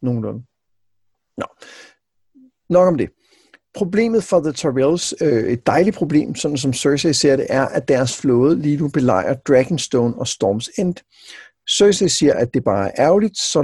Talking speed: 165 wpm